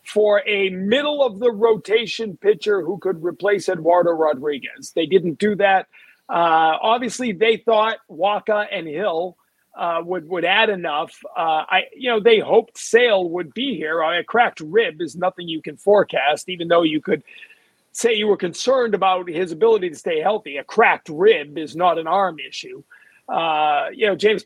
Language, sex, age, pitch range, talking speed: English, male, 40-59, 185-225 Hz, 155 wpm